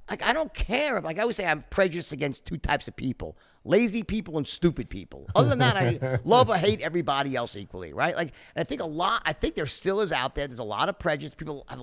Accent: American